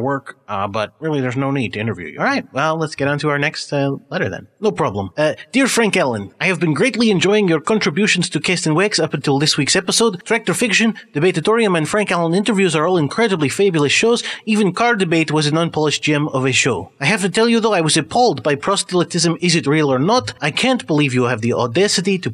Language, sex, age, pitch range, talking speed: English, male, 30-49, 145-205 Hz, 240 wpm